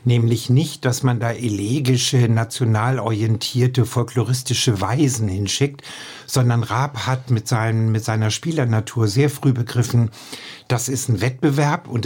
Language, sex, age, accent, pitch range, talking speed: German, male, 50-69, German, 115-135 Hz, 130 wpm